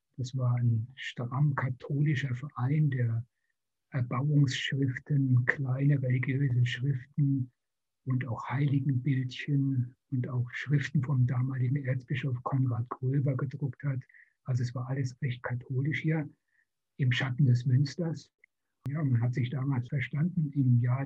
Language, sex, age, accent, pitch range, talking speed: German, male, 60-79, German, 125-140 Hz, 125 wpm